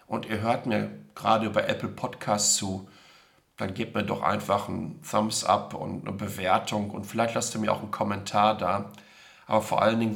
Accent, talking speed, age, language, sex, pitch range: German, 195 wpm, 40-59, German, male, 105-110 Hz